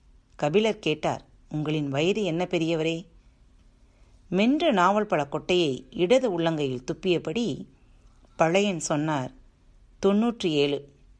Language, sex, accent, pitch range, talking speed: Tamil, female, native, 140-205 Hz, 85 wpm